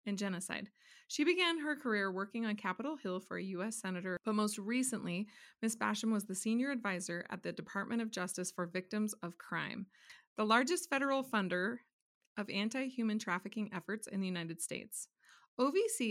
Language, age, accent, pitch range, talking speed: English, 30-49, American, 180-225 Hz, 170 wpm